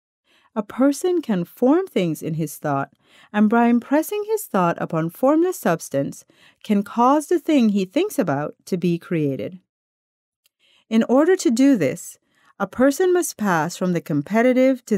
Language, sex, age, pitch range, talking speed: English, female, 40-59, 165-260 Hz, 155 wpm